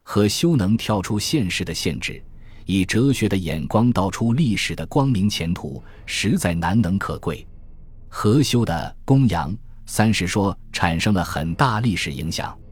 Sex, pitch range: male, 85-115 Hz